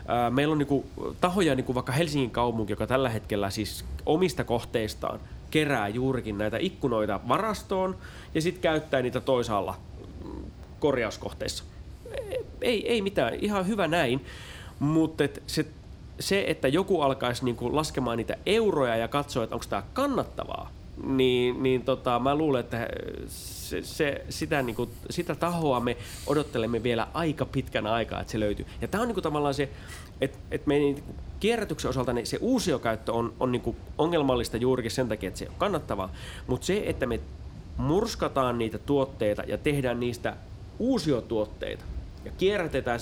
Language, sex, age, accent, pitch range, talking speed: Finnish, male, 30-49, native, 115-155 Hz, 155 wpm